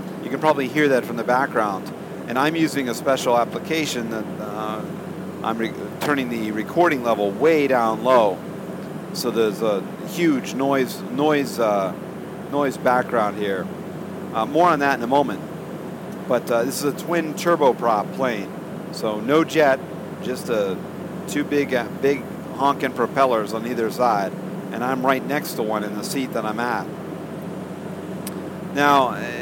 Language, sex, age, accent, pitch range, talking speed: English, male, 50-69, American, 125-150 Hz, 160 wpm